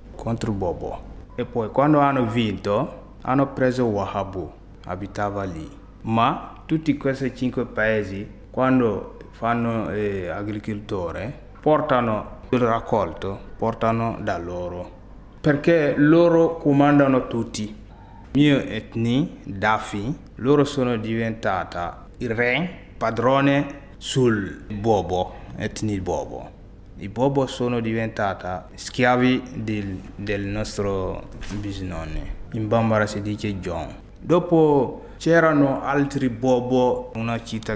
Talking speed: 105 wpm